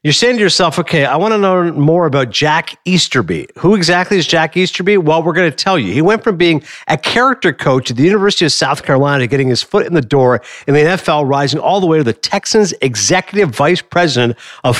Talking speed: 235 wpm